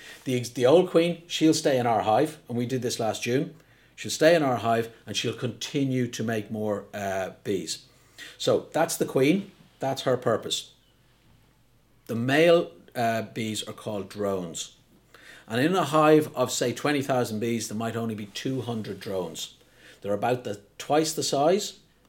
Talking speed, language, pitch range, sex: 165 wpm, English, 110-150 Hz, male